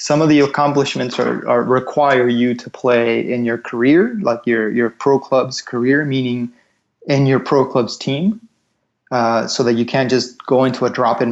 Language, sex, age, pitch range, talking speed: English, male, 20-39, 115-135 Hz, 190 wpm